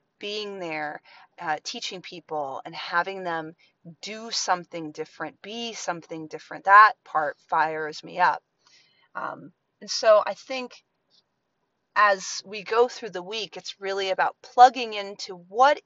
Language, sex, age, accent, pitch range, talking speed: English, female, 30-49, American, 170-235 Hz, 135 wpm